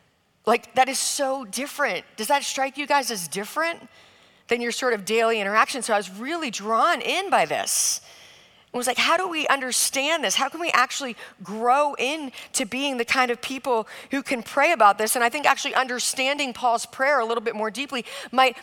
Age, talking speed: 40-59, 205 wpm